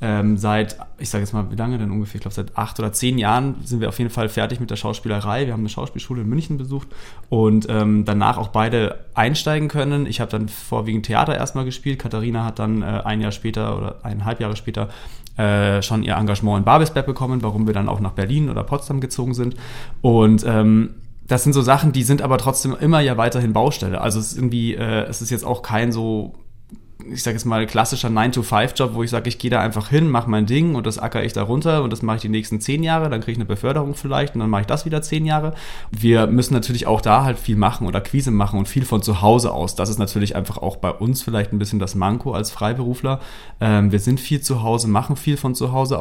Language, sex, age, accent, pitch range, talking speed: German, male, 20-39, German, 105-130 Hz, 245 wpm